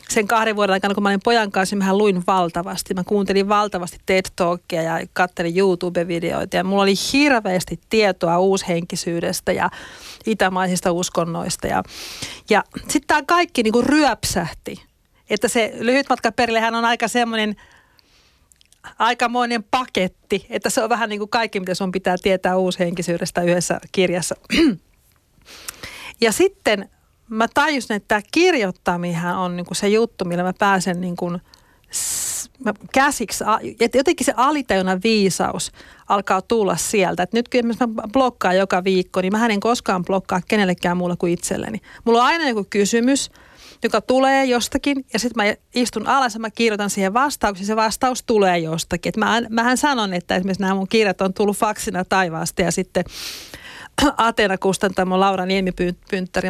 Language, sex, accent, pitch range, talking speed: Finnish, female, native, 185-230 Hz, 150 wpm